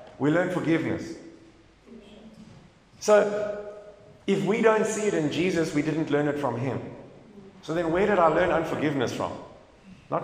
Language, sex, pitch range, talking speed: English, male, 140-190 Hz, 150 wpm